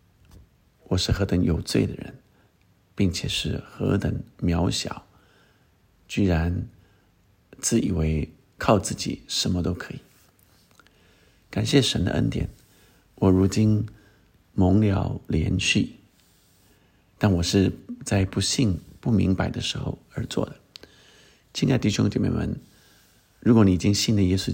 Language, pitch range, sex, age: Chinese, 90-110 Hz, male, 50-69